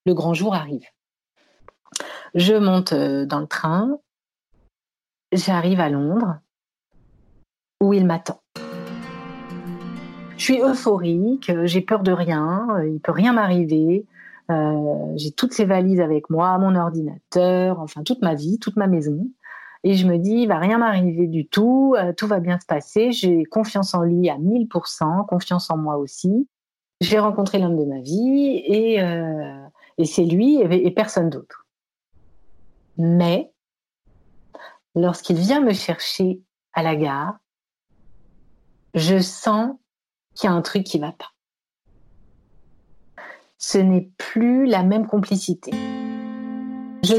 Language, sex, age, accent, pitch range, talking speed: French, female, 40-59, French, 165-210 Hz, 140 wpm